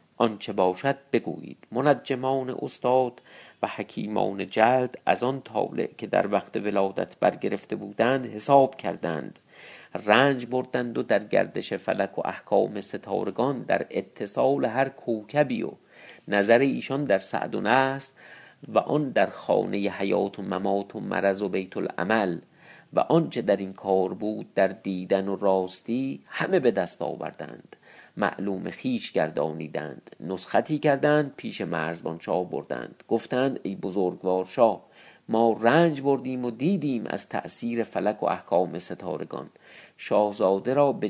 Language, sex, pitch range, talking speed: Persian, male, 100-135 Hz, 135 wpm